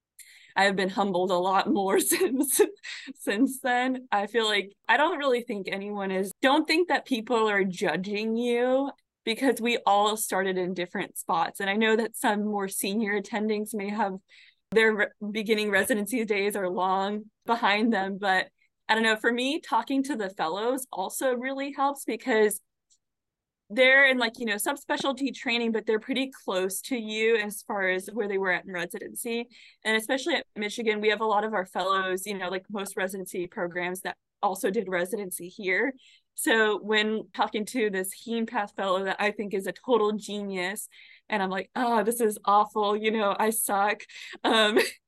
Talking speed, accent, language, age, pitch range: 180 wpm, American, English, 20-39, 195-240 Hz